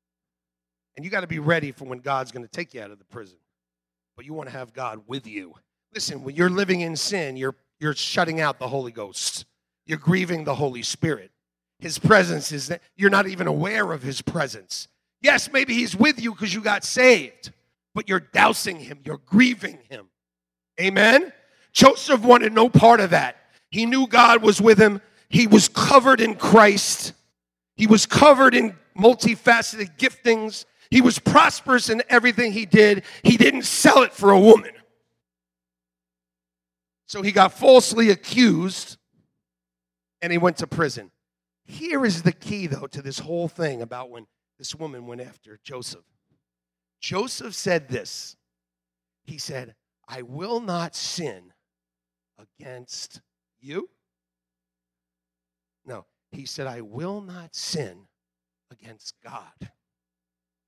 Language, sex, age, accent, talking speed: English, male, 40-59, American, 150 wpm